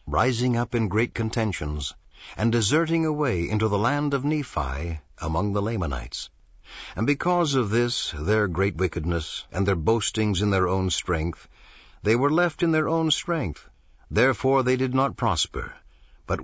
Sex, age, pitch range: male, 60-79, 85-125 Hz